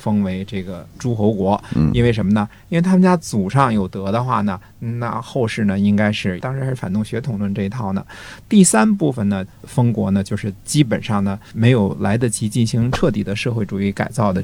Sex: male